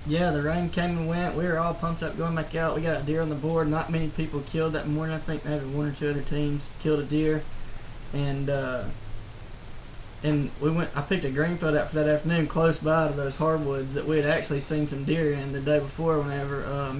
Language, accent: English, American